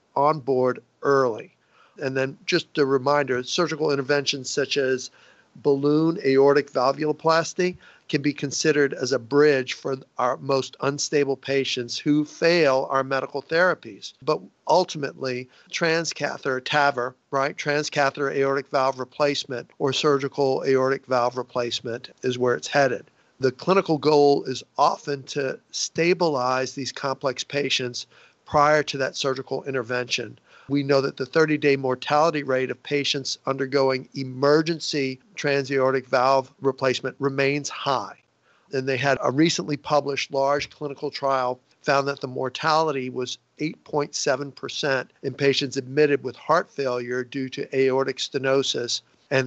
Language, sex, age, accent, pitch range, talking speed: English, male, 50-69, American, 130-145 Hz, 130 wpm